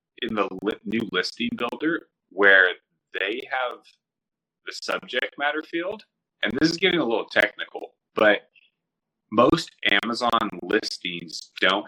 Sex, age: male, 30-49